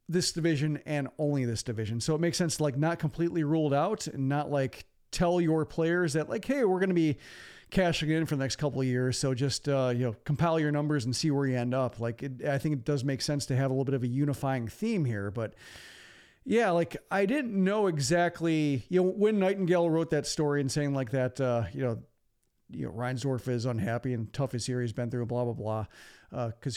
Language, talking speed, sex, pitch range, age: English, 235 wpm, male, 125-170 Hz, 40-59